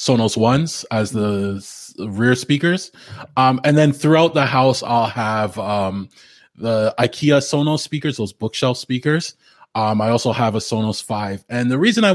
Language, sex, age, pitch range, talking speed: English, male, 20-39, 115-150 Hz, 165 wpm